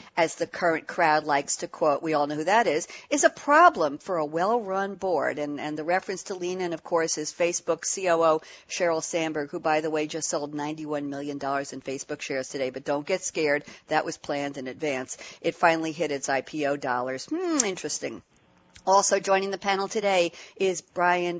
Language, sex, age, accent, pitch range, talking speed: English, female, 60-79, American, 150-195 Hz, 195 wpm